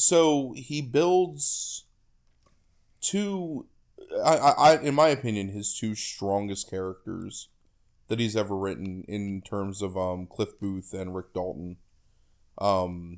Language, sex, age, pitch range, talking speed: English, male, 20-39, 95-110 Hz, 125 wpm